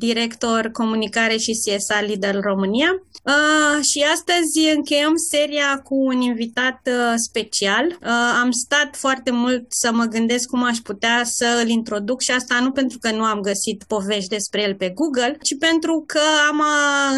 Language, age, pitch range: Romanian, 20-39, 230-275 Hz